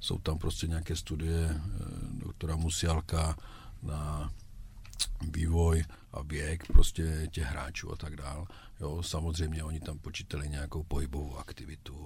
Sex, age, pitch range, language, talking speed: male, 50-69, 80-90 Hz, Czech, 125 wpm